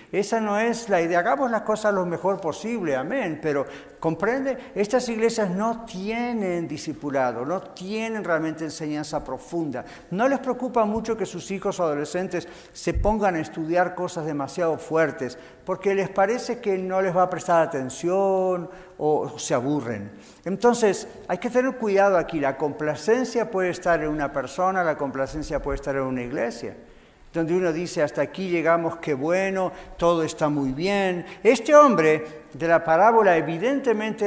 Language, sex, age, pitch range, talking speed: English, male, 50-69, 160-210 Hz, 160 wpm